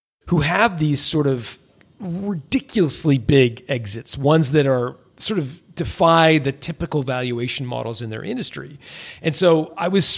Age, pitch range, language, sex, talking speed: 40-59, 125-155 Hz, English, male, 145 wpm